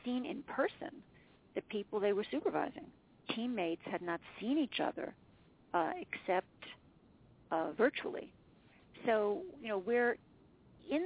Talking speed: 125 wpm